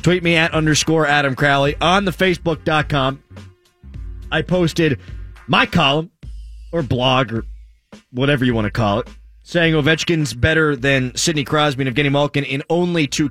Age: 30-49